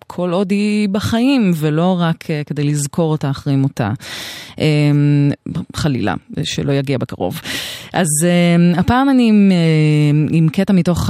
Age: 20-39